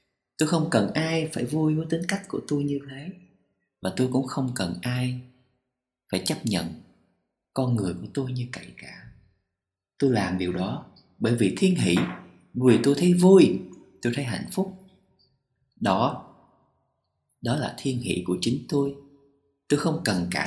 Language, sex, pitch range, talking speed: Vietnamese, male, 100-150 Hz, 165 wpm